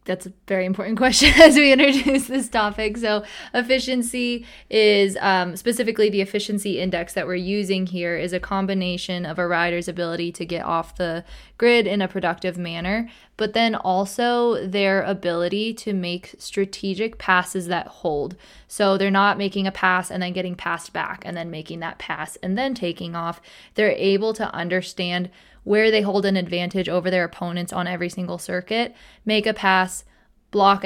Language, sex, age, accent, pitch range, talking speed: English, female, 20-39, American, 175-205 Hz, 175 wpm